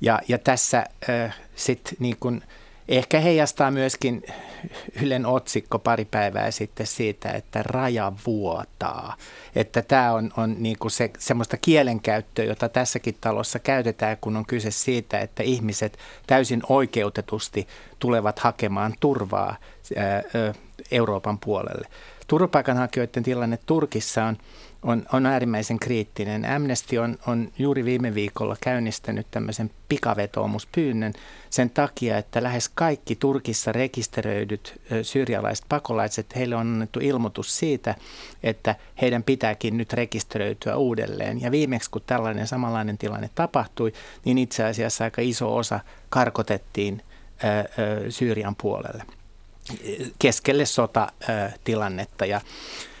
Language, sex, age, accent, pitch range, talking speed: Finnish, male, 60-79, native, 110-125 Hz, 115 wpm